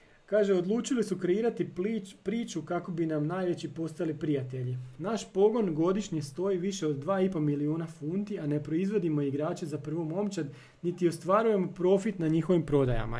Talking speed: 155 wpm